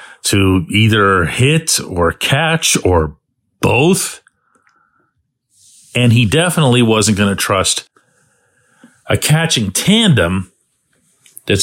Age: 40-59